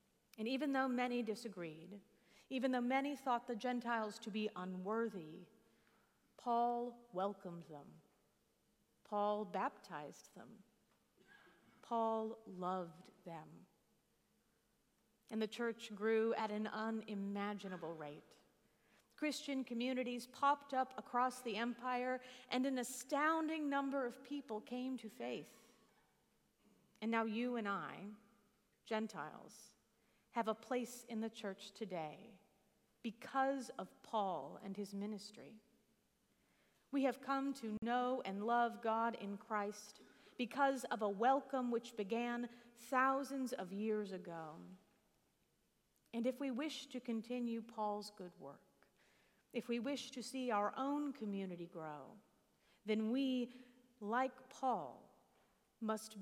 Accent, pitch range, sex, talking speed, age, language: American, 205-255 Hz, female, 115 wpm, 40-59, English